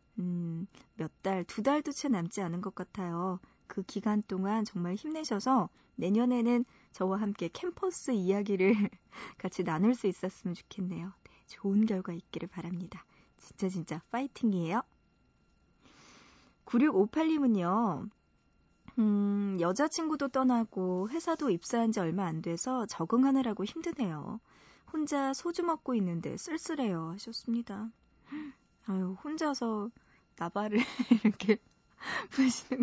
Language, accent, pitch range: Korean, native, 185-255 Hz